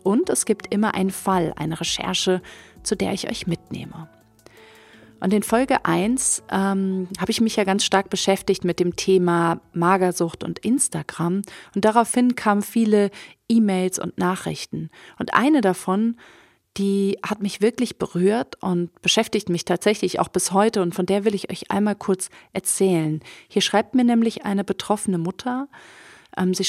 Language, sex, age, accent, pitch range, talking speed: German, female, 30-49, German, 185-220 Hz, 160 wpm